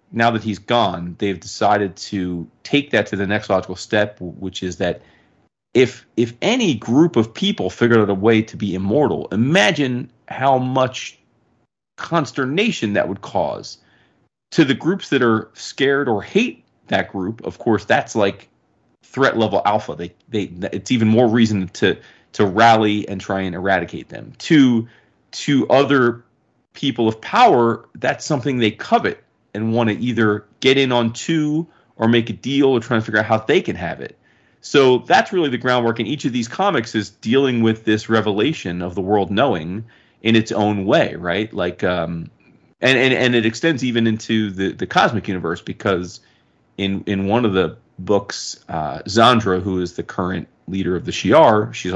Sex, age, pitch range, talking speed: male, 30-49, 100-125 Hz, 180 wpm